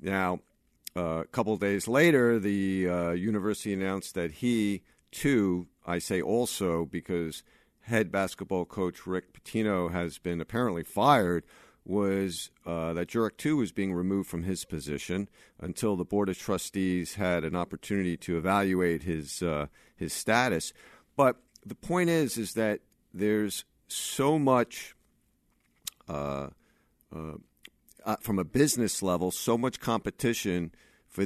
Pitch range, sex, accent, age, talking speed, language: 90-125 Hz, male, American, 50-69, 135 wpm, English